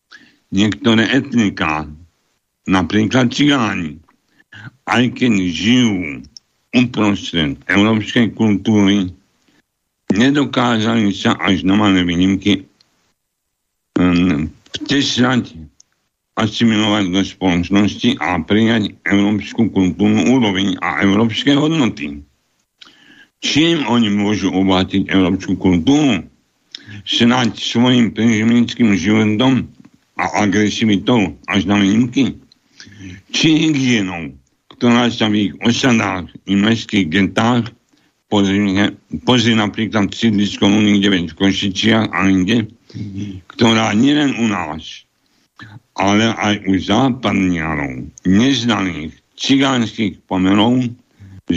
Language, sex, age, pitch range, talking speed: Slovak, male, 60-79, 95-115 Hz, 85 wpm